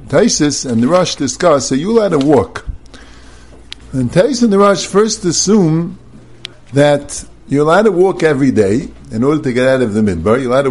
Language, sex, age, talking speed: English, male, 50-69, 190 wpm